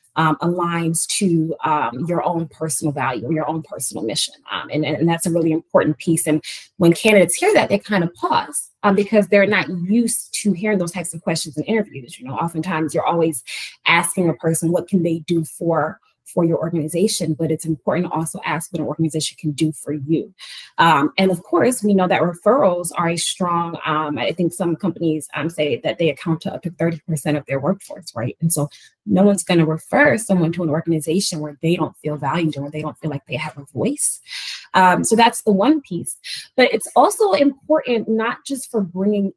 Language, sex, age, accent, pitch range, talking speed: English, female, 20-39, American, 155-190 Hz, 215 wpm